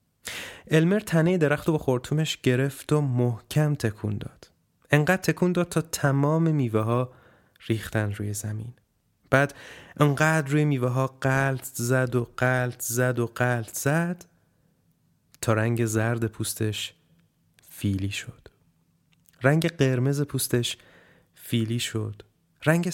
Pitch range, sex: 105-135 Hz, male